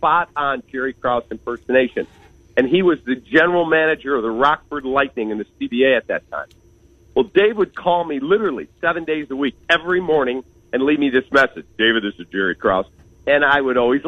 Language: English